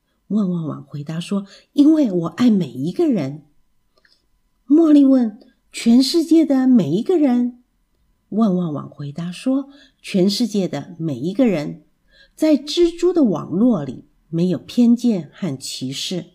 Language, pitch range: Chinese, 170-270 Hz